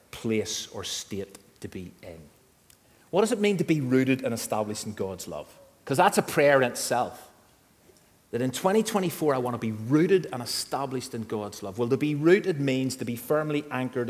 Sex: male